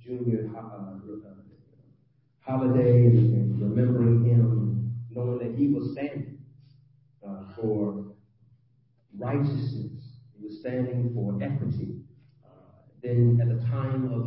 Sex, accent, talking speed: male, American, 105 wpm